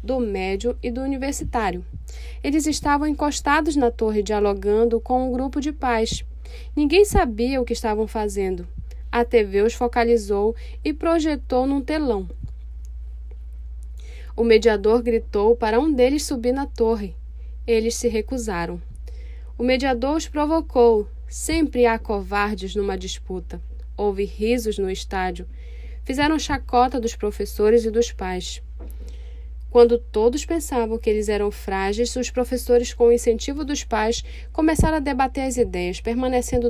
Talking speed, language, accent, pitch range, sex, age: 135 wpm, Portuguese, Brazilian, 190-245 Hz, female, 10-29